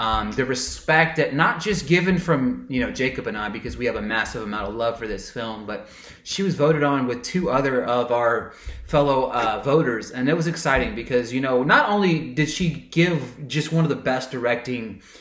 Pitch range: 125-165 Hz